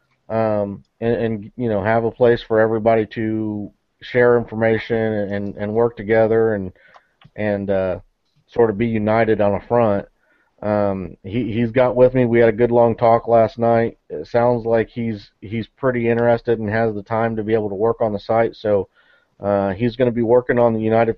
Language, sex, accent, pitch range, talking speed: English, male, American, 110-125 Hz, 200 wpm